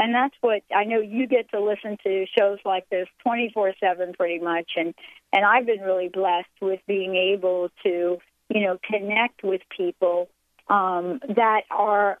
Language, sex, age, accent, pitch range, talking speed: English, female, 50-69, American, 190-235 Hz, 165 wpm